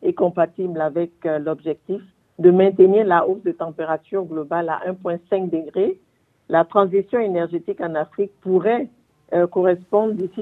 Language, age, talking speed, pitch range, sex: French, 50-69, 130 wpm, 170-205 Hz, female